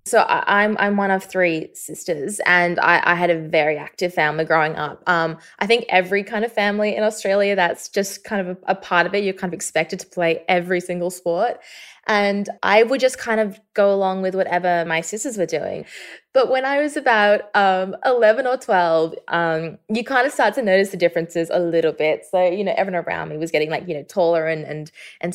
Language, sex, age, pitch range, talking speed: English, female, 20-39, 170-205 Hz, 225 wpm